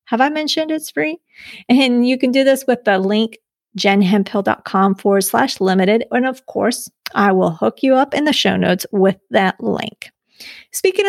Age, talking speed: 30-49, 180 wpm